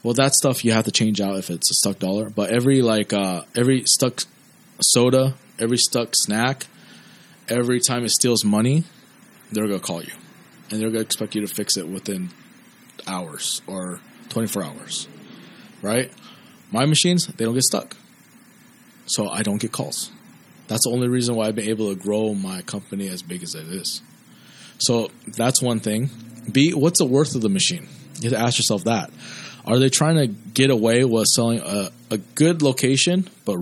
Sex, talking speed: male, 190 wpm